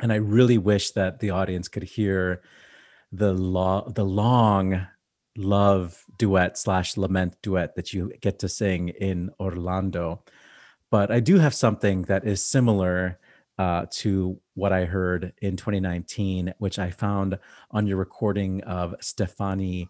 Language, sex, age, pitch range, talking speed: English, male, 30-49, 90-110 Hz, 140 wpm